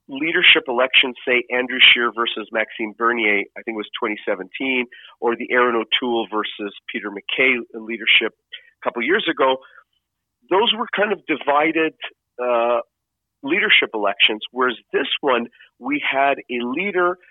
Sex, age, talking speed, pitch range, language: male, 40-59, 140 wpm, 120-140 Hz, English